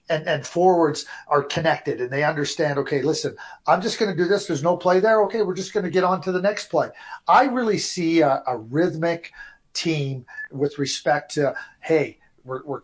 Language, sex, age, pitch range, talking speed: English, male, 50-69, 145-180 Hz, 205 wpm